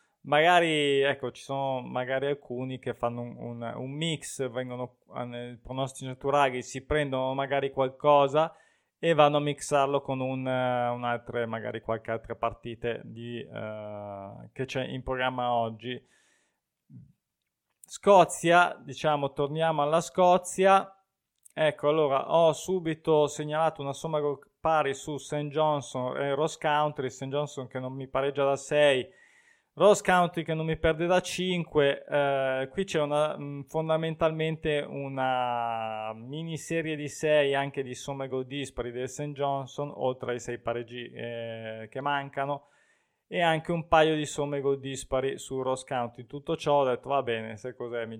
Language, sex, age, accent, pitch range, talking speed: Italian, male, 20-39, native, 125-150 Hz, 145 wpm